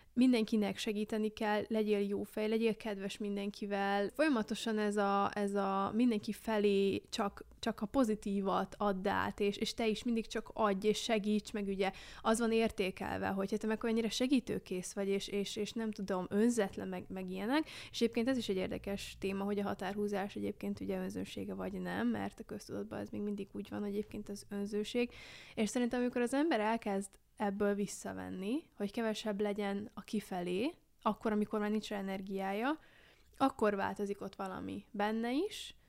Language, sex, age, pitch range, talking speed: Hungarian, female, 20-39, 200-225 Hz, 165 wpm